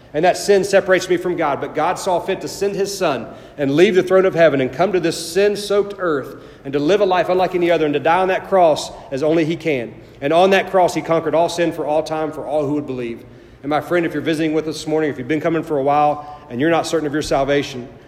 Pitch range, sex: 135-170 Hz, male